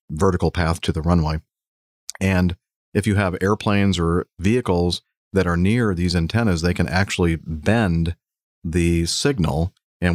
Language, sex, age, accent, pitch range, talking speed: English, male, 40-59, American, 85-100 Hz, 140 wpm